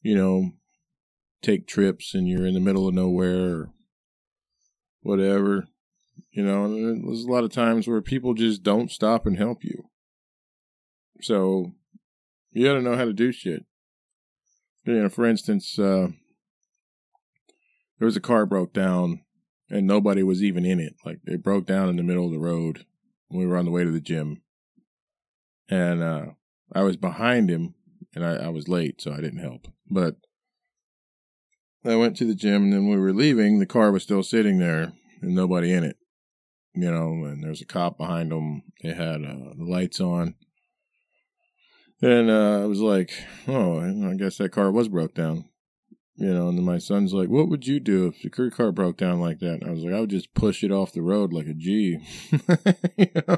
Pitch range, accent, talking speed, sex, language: 90-125 Hz, American, 190 wpm, male, English